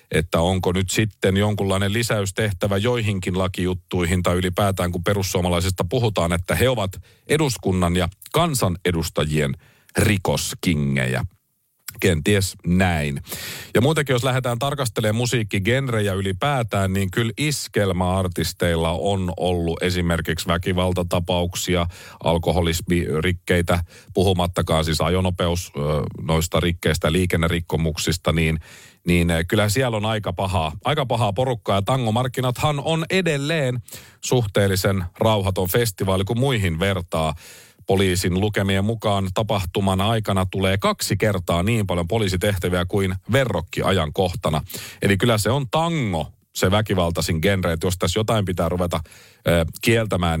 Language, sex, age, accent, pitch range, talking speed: Finnish, male, 40-59, native, 85-110 Hz, 110 wpm